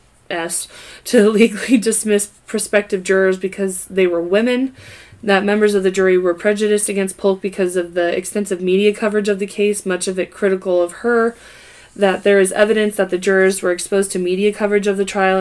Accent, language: American, English